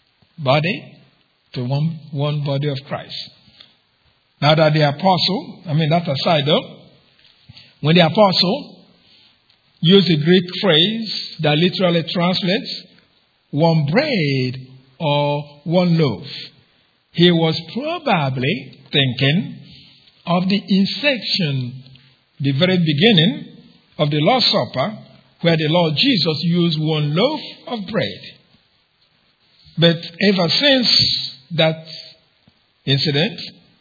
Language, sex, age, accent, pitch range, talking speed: English, male, 50-69, Nigerian, 145-180 Hz, 105 wpm